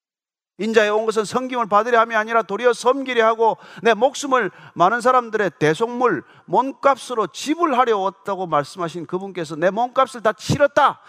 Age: 40-59